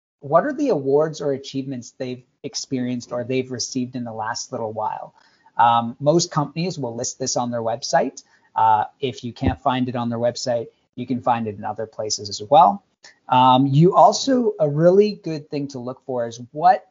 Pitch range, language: 125-160 Hz, English